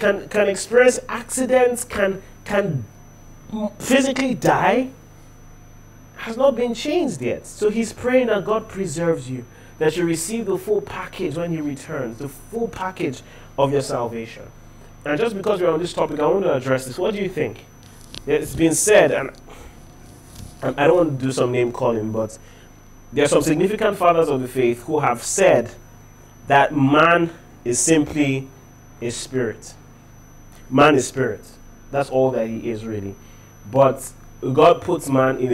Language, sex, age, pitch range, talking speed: English, male, 30-49, 115-150 Hz, 160 wpm